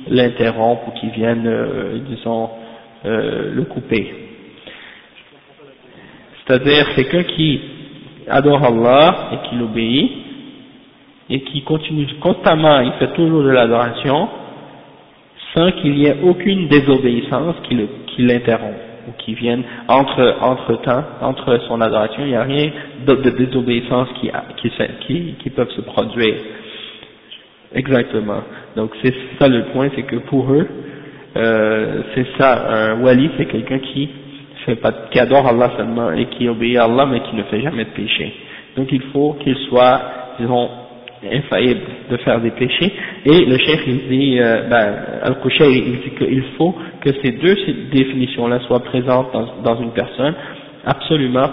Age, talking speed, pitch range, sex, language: 50-69, 155 wpm, 120-140 Hz, male, French